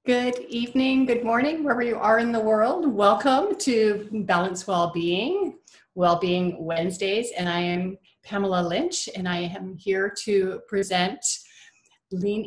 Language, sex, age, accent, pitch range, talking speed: English, female, 40-59, American, 175-230 Hz, 135 wpm